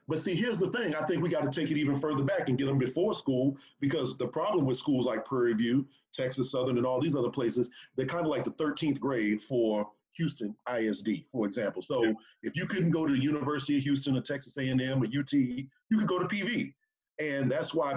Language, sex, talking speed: English, male, 235 wpm